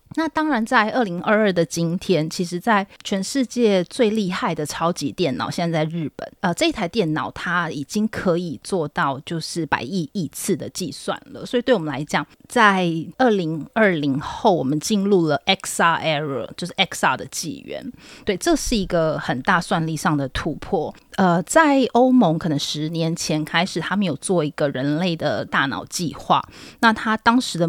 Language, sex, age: Chinese, female, 30-49